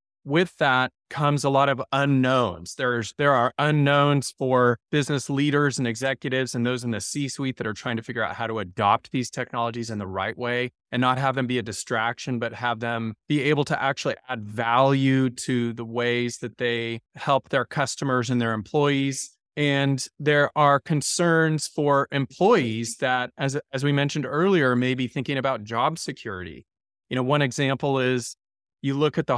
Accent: American